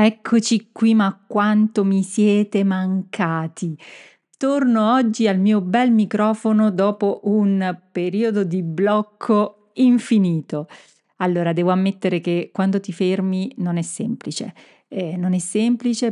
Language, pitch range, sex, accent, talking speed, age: Italian, 180-220 Hz, female, native, 125 wpm, 40-59